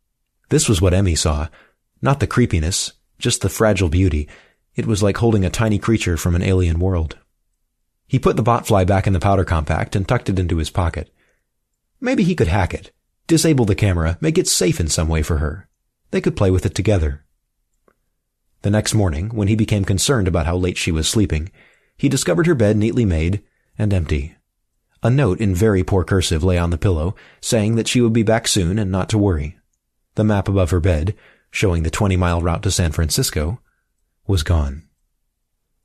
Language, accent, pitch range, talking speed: English, American, 85-110 Hz, 195 wpm